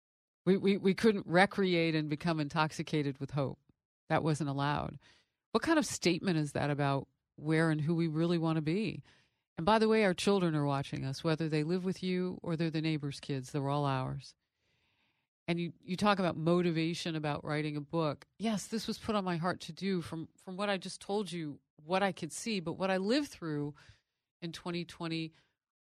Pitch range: 145-185 Hz